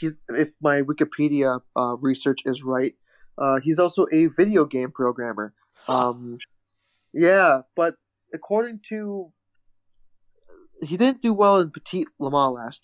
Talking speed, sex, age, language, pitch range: 130 wpm, male, 20-39, English, 130-175 Hz